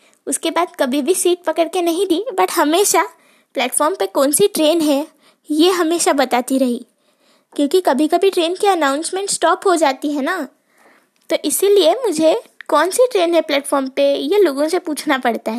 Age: 20-39